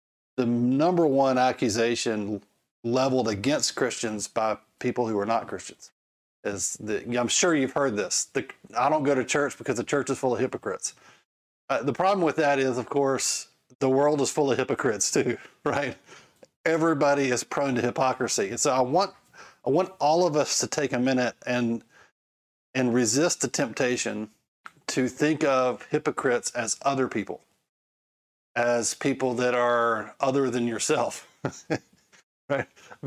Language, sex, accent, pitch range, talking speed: English, male, American, 120-140 Hz, 160 wpm